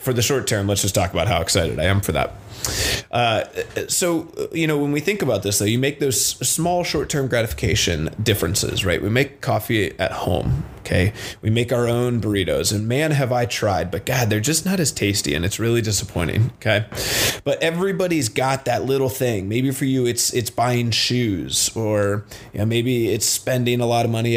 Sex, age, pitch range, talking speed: male, 30-49, 105-135 Hz, 205 wpm